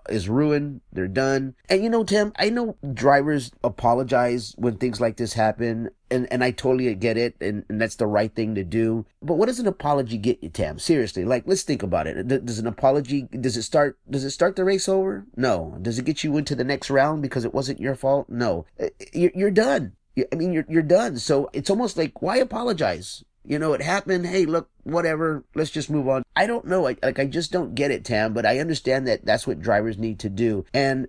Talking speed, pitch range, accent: 230 wpm, 115-155 Hz, American